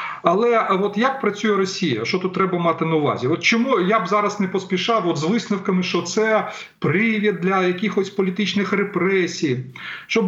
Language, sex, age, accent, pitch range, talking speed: Ukrainian, male, 40-59, native, 180-230 Hz, 170 wpm